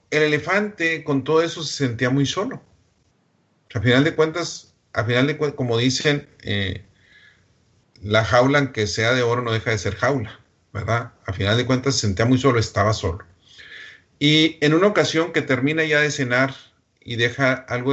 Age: 40-59